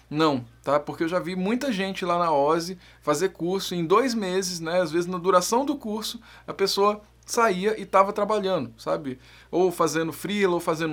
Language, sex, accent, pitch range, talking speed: Portuguese, male, Brazilian, 165-200 Hz, 200 wpm